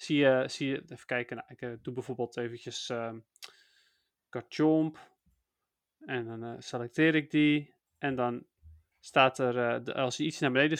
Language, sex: Dutch, male